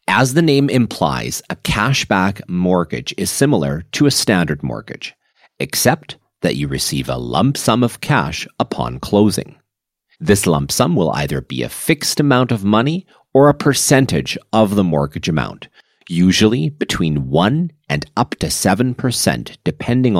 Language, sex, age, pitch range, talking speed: English, male, 40-59, 85-125 Hz, 150 wpm